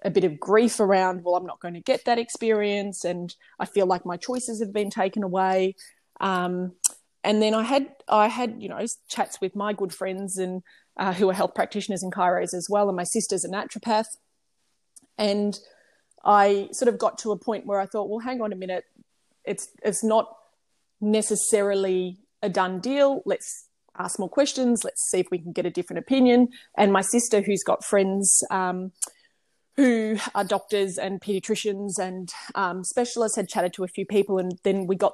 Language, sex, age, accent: English, female, 20-39, Australian